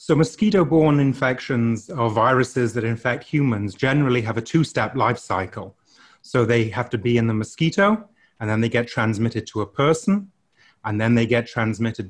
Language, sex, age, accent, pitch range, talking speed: English, male, 30-49, British, 110-140 Hz, 175 wpm